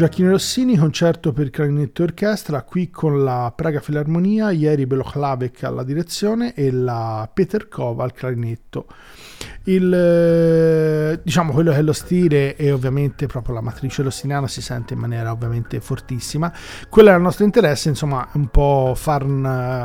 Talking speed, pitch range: 155 wpm, 130-155 Hz